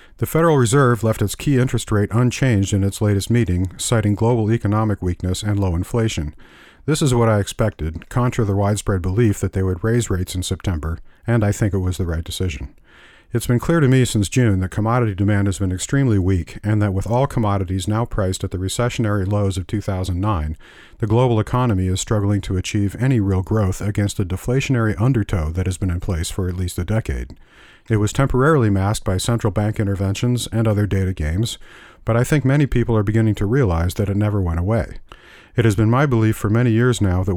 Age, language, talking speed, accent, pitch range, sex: 50-69, English, 210 wpm, American, 95-115 Hz, male